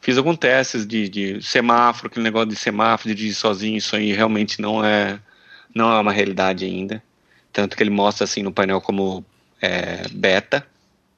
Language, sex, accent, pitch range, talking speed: Portuguese, male, Brazilian, 100-115 Hz, 170 wpm